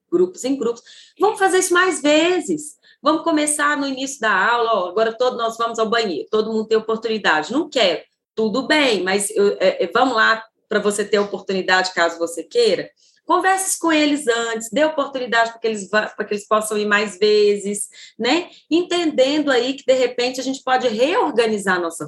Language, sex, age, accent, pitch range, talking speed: Portuguese, female, 20-39, Brazilian, 215-300 Hz, 180 wpm